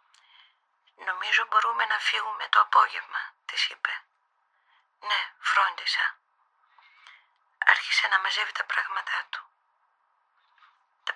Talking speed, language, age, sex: 90 wpm, Greek, 40-59, female